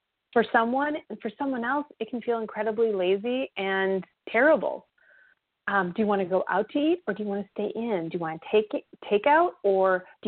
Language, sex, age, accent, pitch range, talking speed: English, female, 30-49, American, 195-265 Hz, 205 wpm